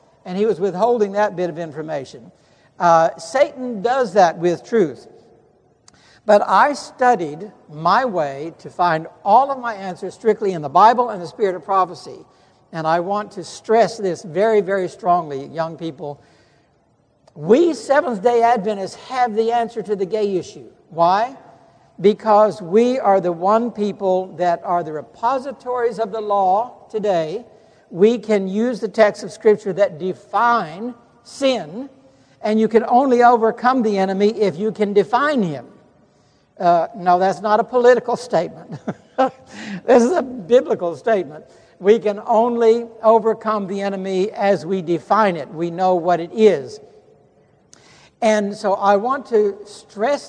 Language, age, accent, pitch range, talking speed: English, 60-79, American, 180-235 Hz, 150 wpm